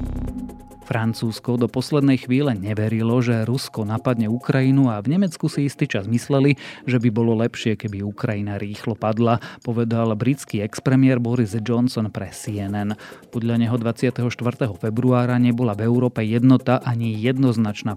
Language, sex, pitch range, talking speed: Slovak, male, 110-130 Hz, 135 wpm